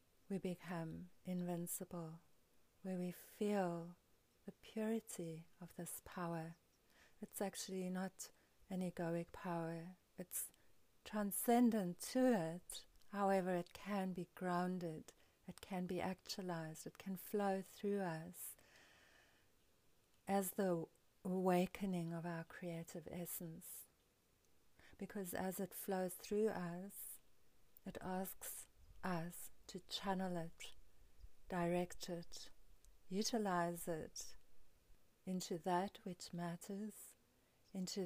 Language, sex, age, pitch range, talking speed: English, female, 40-59, 170-190 Hz, 100 wpm